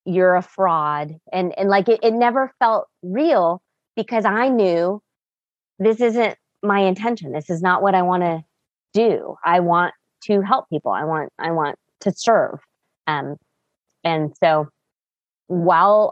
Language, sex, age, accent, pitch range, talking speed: English, female, 20-39, American, 155-190 Hz, 155 wpm